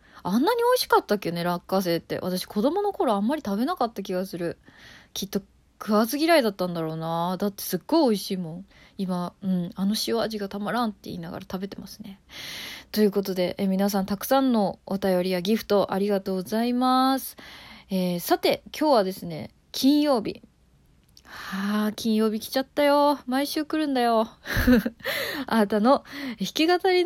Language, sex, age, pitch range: Japanese, female, 20-39, 190-270 Hz